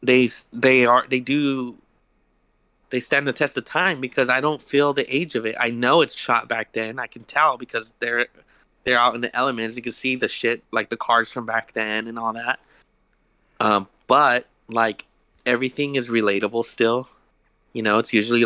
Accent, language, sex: American, English, male